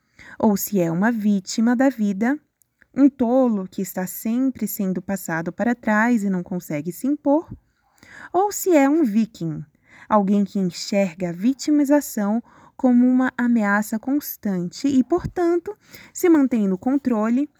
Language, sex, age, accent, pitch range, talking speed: Portuguese, female, 20-39, Brazilian, 195-260 Hz, 140 wpm